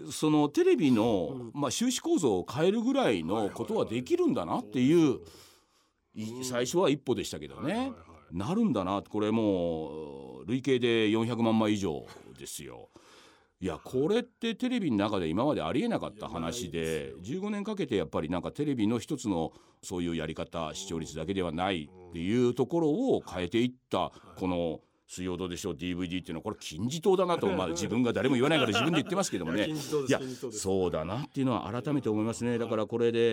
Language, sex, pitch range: Japanese, male, 90-145 Hz